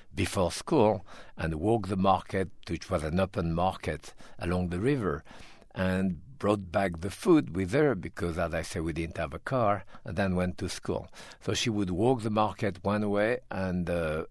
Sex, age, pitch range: male, 50-69, 90-105 Hz